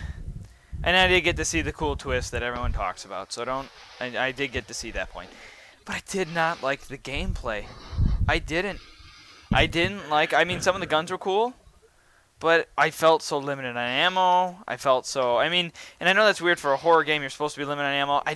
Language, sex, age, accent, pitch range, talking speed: English, male, 10-29, American, 120-155 Hz, 235 wpm